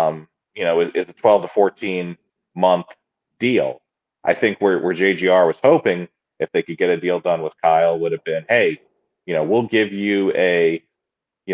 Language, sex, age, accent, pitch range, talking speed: English, male, 30-49, American, 85-95 Hz, 175 wpm